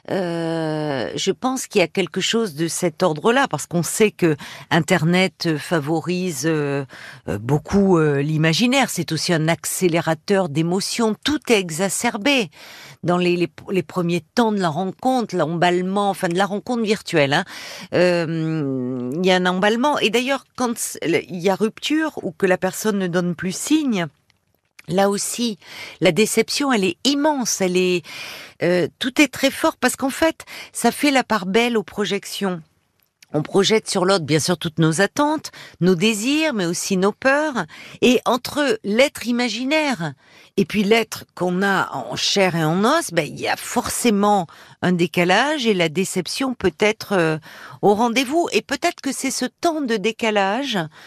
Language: French